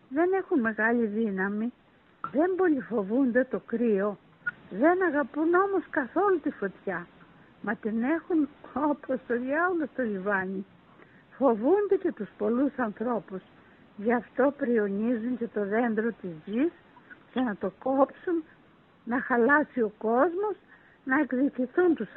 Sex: female